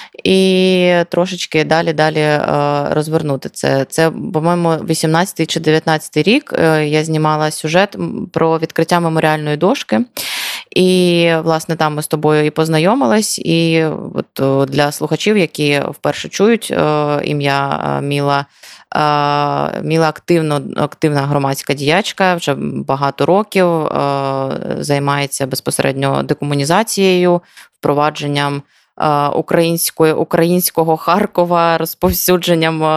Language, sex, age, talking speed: Ukrainian, female, 20-39, 90 wpm